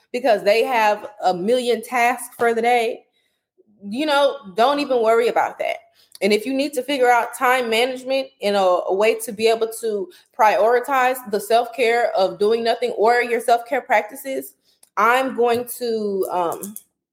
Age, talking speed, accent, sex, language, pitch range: 20-39, 165 wpm, American, female, English, 205-250 Hz